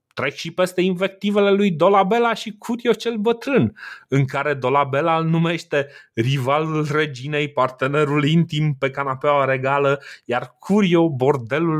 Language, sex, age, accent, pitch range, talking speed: Romanian, male, 30-49, native, 120-155 Hz, 125 wpm